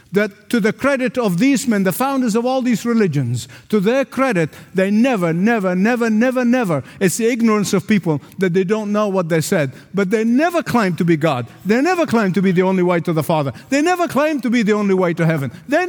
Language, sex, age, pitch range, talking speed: English, male, 50-69, 135-215 Hz, 240 wpm